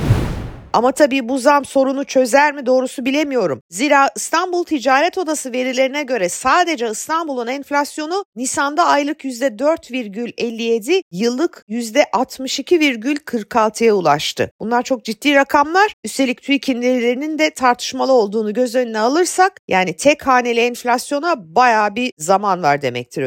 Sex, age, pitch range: female, 50-69, 235-310 Hz